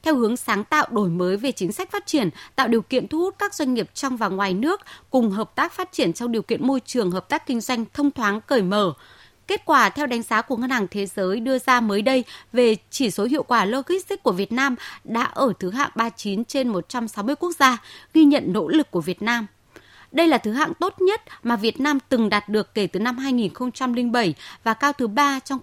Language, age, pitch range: Vietnamese, 20-39, 210-275 Hz